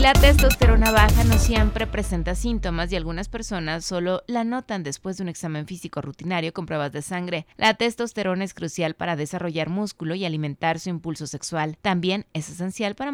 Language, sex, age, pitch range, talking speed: Spanish, female, 20-39, 150-200 Hz, 180 wpm